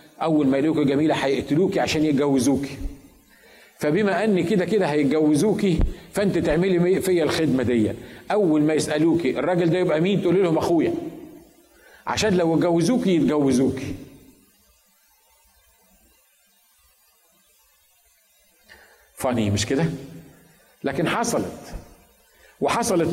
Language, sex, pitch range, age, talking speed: Arabic, male, 150-185 Hz, 50-69, 100 wpm